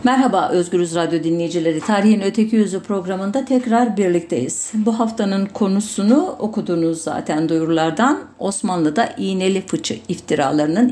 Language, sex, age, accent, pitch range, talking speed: German, female, 50-69, Turkish, 175-235 Hz, 110 wpm